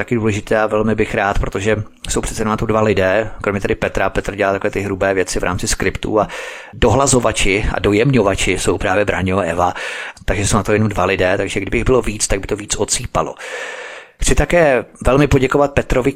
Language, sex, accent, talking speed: Czech, male, native, 210 wpm